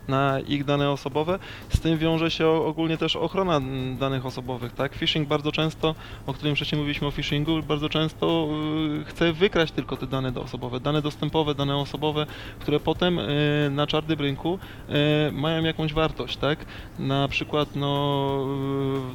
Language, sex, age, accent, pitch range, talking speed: Polish, male, 20-39, native, 135-160 Hz, 150 wpm